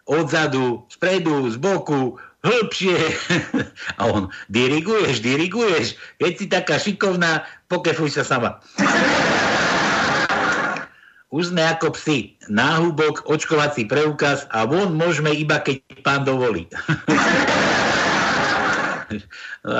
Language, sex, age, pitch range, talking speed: Slovak, male, 60-79, 130-170 Hz, 95 wpm